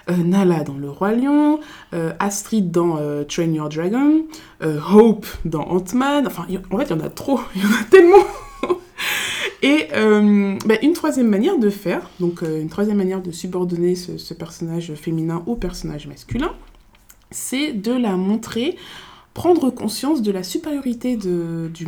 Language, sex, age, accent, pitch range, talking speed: French, female, 20-39, French, 170-225 Hz, 175 wpm